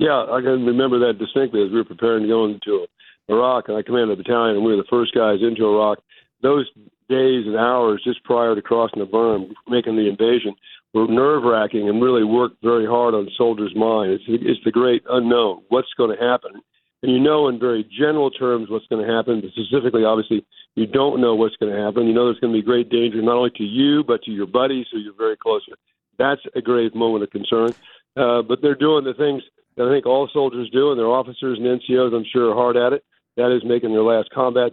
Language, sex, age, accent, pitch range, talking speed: English, male, 50-69, American, 110-125 Hz, 235 wpm